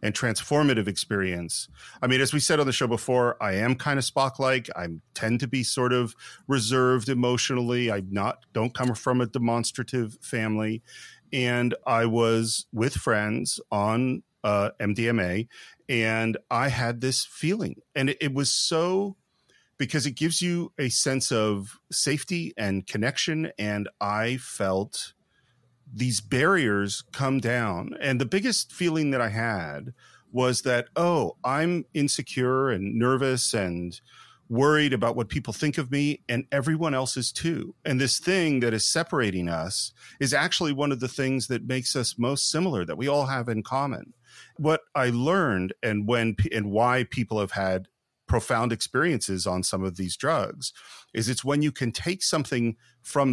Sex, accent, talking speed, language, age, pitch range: male, American, 160 wpm, English, 40-59, 110-140 Hz